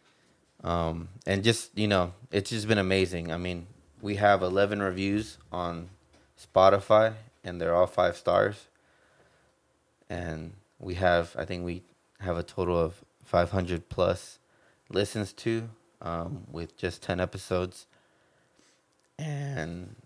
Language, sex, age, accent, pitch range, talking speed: English, male, 20-39, American, 85-100 Hz, 130 wpm